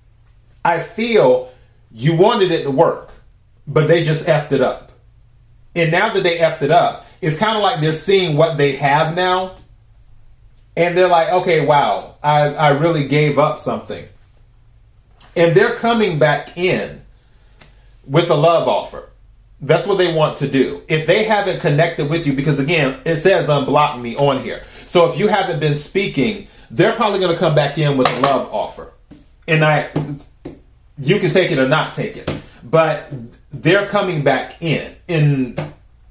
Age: 30-49